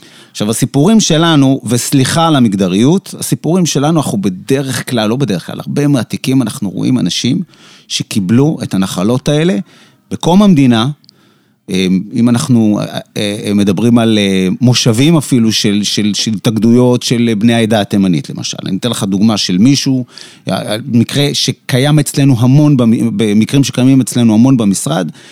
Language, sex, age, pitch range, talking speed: Hebrew, male, 30-49, 115-165 Hz, 130 wpm